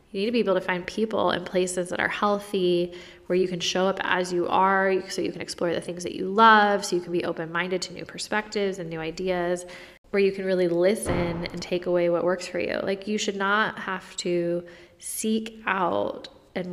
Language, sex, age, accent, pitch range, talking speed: English, female, 20-39, American, 175-200 Hz, 220 wpm